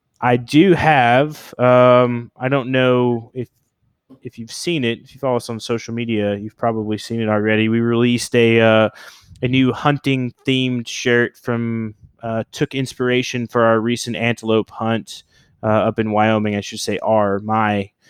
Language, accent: English, American